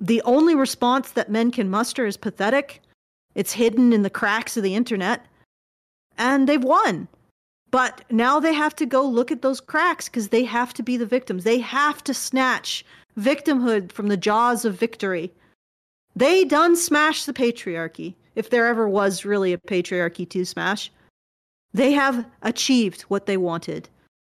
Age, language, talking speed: 40-59, English, 165 wpm